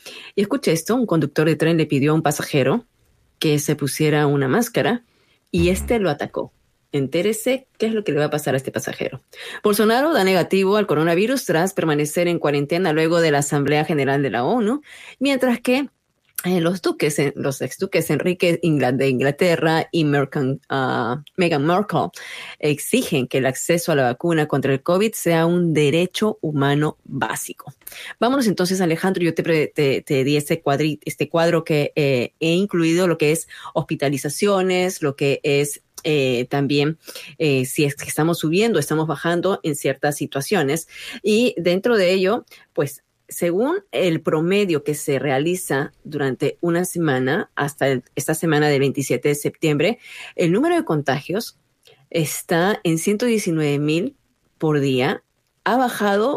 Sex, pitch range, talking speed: female, 145-190 Hz, 160 wpm